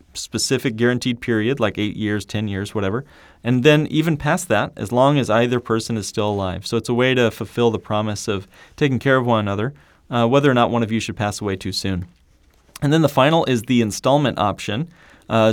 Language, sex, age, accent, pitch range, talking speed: English, male, 30-49, American, 110-135 Hz, 220 wpm